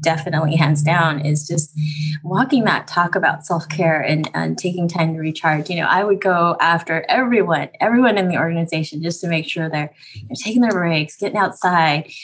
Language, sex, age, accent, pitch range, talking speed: English, female, 20-39, American, 155-195 Hz, 185 wpm